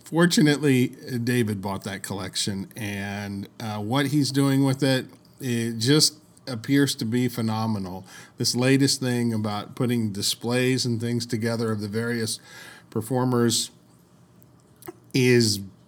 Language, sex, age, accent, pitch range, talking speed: English, male, 40-59, American, 110-135 Hz, 120 wpm